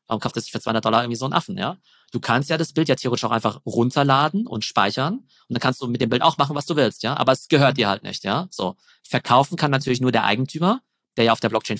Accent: German